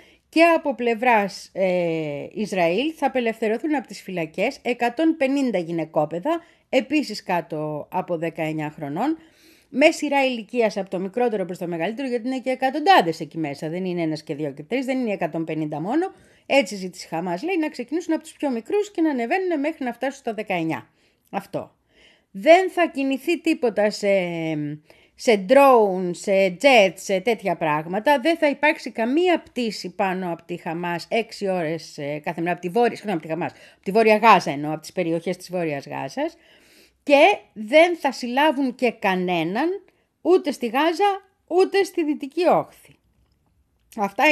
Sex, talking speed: female, 155 wpm